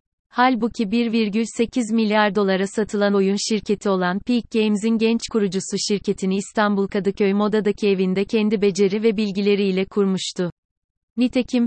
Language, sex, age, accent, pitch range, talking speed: Turkish, female, 30-49, native, 195-220 Hz, 120 wpm